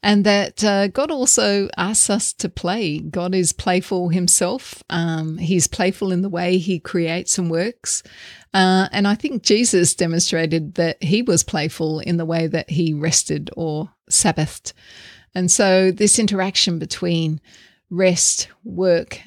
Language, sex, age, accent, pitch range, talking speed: English, female, 30-49, Australian, 170-200 Hz, 150 wpm